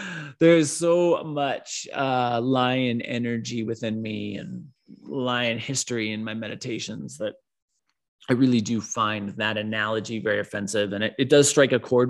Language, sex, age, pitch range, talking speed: English, male, 30-49, 110-150 Hz, 150 wpm